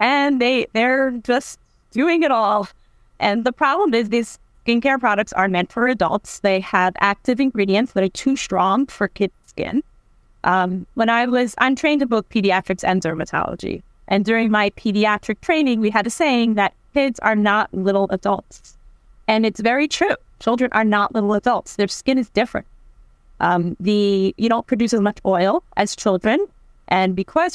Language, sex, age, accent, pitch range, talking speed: English, female, 30-49, American, 185-235 Hz, 175 wpm